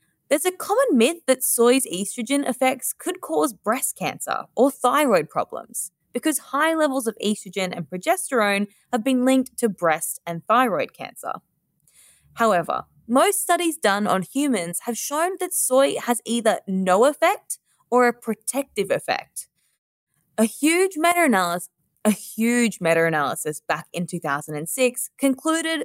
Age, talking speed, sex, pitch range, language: 20-39, 135 wpm, female, 175-275 Hz, English